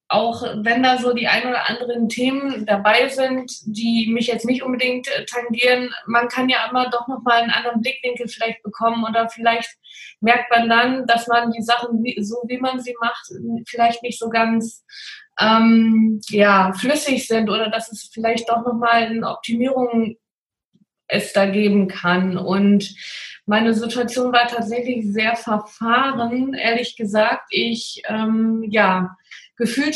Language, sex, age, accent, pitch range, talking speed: German, female, 20-39, German, 220-245 Hz, 150 wpm